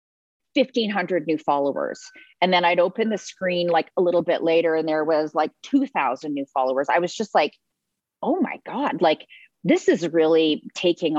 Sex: female